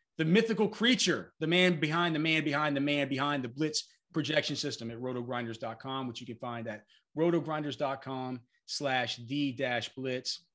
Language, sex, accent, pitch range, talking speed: English, male, American, 115-150 Hz, 155 wpm